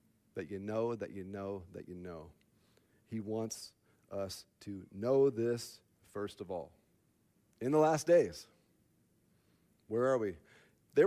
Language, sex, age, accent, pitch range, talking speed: English, male, 40-59, American, 105-130 Hz, 140 wpm